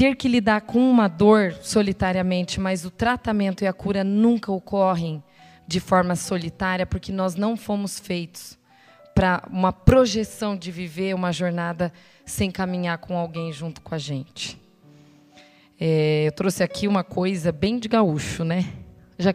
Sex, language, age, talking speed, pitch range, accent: female, Portuguese, 20-39, 150 wpm, 170-210 Hz, Brazilian